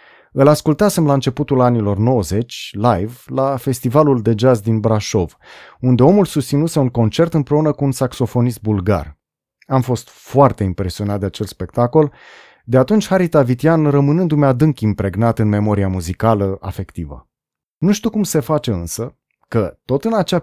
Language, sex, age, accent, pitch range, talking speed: Romanian, male, 30-49, native, 110-145 Hz, 155 wpm